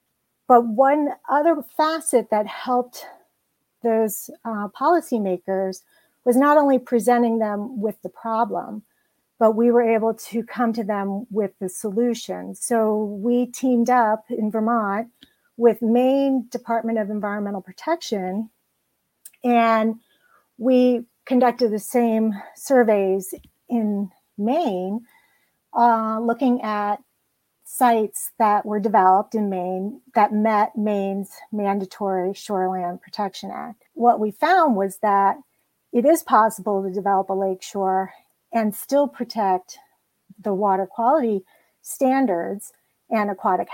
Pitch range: 200-240 Hz